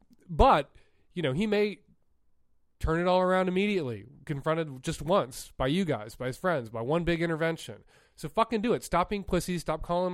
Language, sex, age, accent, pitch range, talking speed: English, male, 30-49, American, 135-185 Hz, 190 wpm